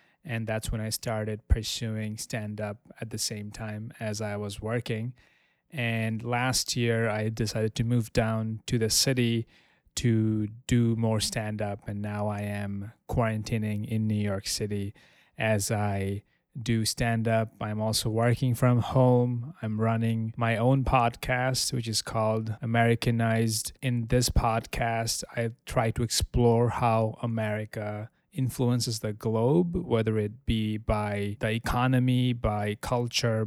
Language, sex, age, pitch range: English, male, 20-39, 110-120 Hz